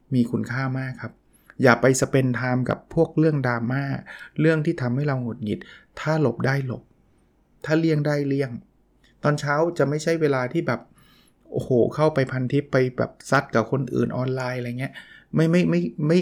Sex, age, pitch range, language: male, 20-39, 120-150 Hz, Thai